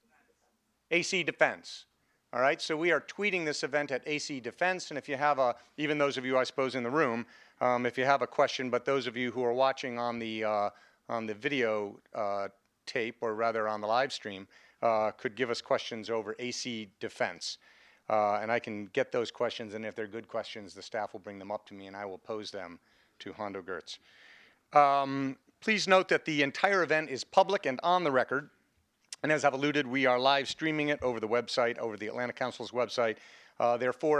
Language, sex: English, male